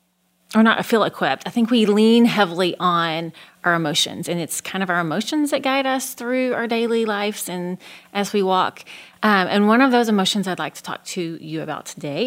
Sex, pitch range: female, 165-215 Hz